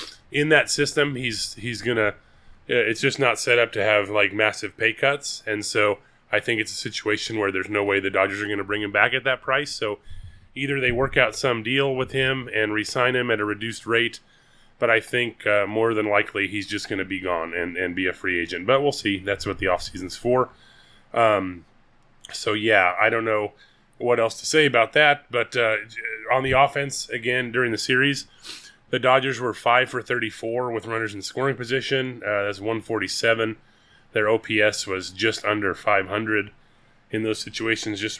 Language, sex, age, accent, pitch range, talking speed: English, male, 30-49, American, 105-130 Hz, 195 wpm